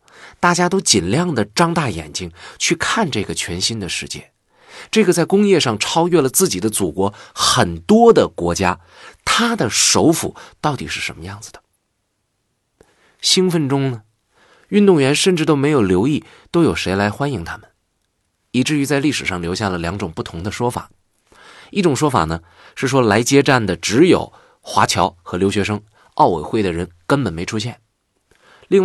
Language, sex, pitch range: Chinese, male, 90-135 Hz